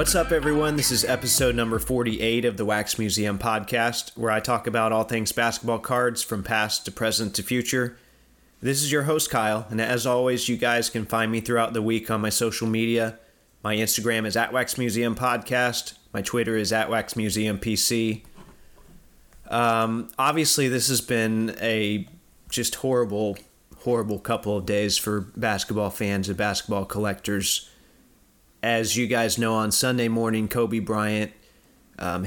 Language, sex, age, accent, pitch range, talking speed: English, male, 30-49, American, 105-120 Hz, 165 wpm